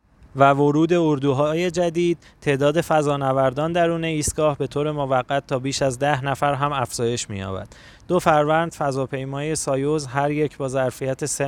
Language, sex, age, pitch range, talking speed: Persian, male, 20-39, 130-150 Hz, 150 wpm